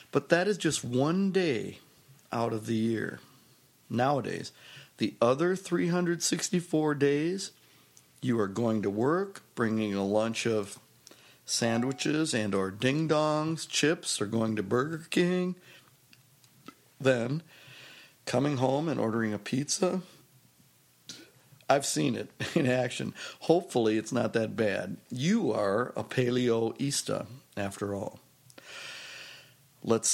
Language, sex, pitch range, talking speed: English, male, 115-150 Hz, 115 wpm